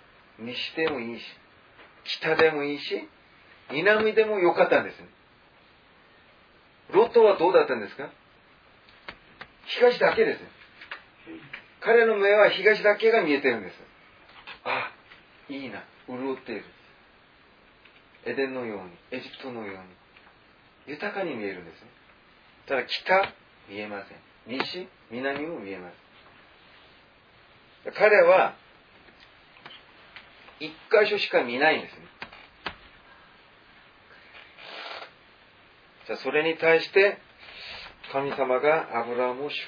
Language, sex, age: Japanese, male, 40-59